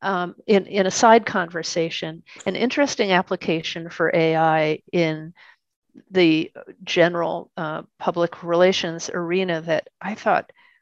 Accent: American